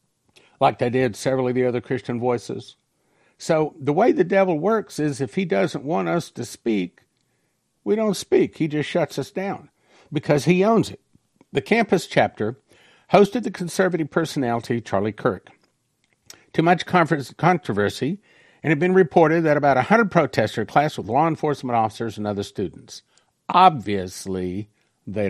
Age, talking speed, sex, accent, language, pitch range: 50-69, 160 wpm, male, American, English, 110-175 Hz